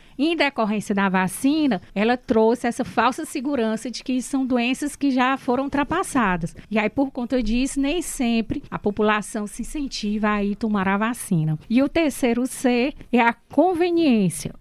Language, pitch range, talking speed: Portuguese, 215-270 Hz, 165 wpm